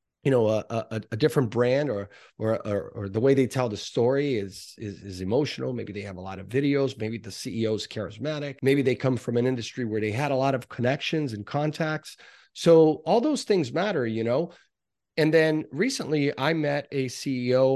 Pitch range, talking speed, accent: 110-145 Hz, 210 wpm, American